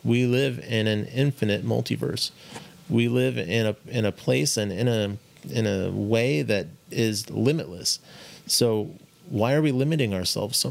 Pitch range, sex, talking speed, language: 105-135 Hz, male, 165 wpm, English